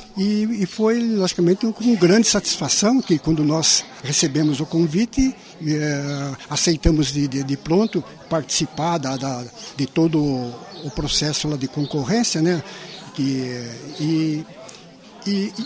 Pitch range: 150-220 Hz